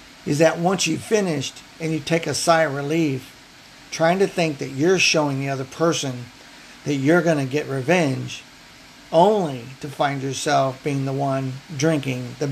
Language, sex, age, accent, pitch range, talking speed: English, male, 50-69, American, 135-160 Hz, 175 wpm